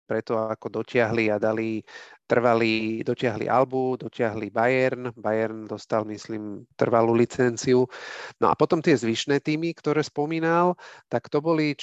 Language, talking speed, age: Slovak, 130 wpm, 40-59